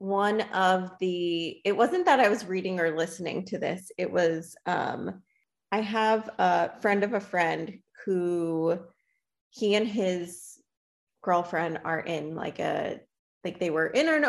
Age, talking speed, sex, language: 20-39, 155 wpm, female, English